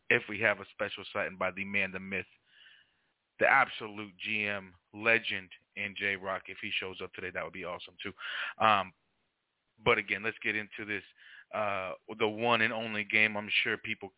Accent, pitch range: American, 100-120 Hz